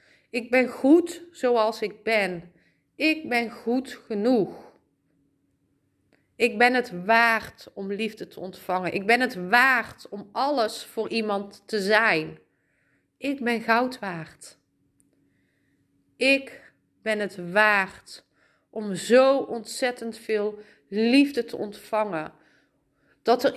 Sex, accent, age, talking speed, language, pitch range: female, Dutch, 30-49, 115 wpm, Dutch, 195-250 Hz